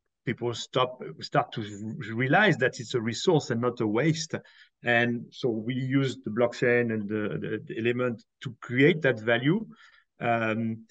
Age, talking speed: 40-59, 160 wpm